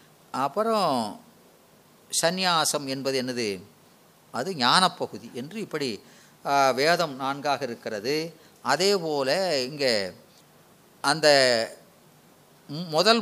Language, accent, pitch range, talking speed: Tamil, native, 140-180 Hz, 75 wpm